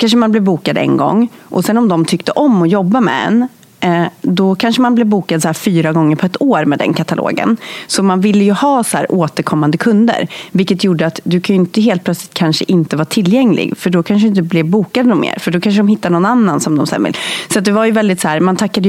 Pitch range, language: 160-210 Hz, Swedish